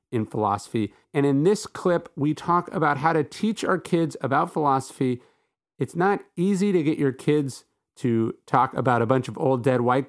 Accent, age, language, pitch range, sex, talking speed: American, 40-59, English, 125-160 Hz, male, 190 wpm